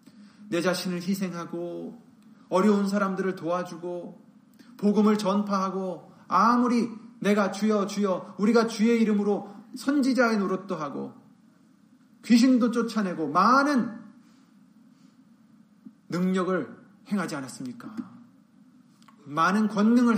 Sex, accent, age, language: male, native, 30-49, Korean